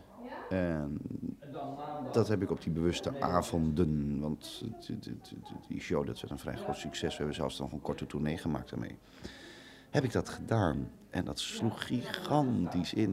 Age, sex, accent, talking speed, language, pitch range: 40-59, male, Dutch, 160 wpm, Dutch, 75-110 Hz